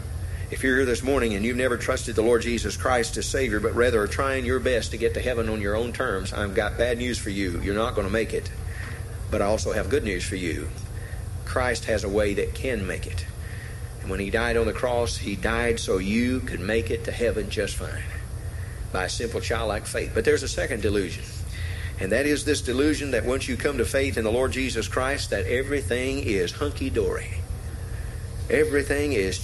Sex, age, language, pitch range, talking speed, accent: male, 40-59, English, 95-115 Hz, 215 wpm, American